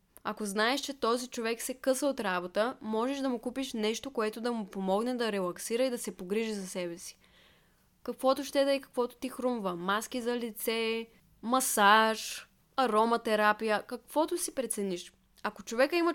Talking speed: 165 wpm